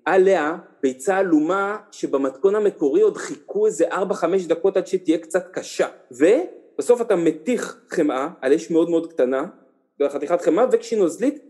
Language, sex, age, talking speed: Hebrew, male, 40-59, 145 wpm